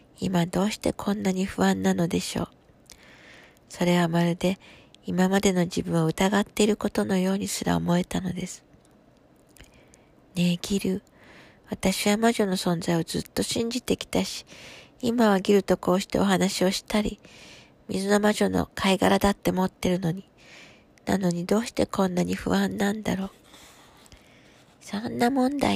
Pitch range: 175-205 Hz